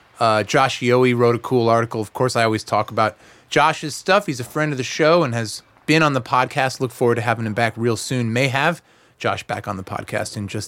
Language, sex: English, male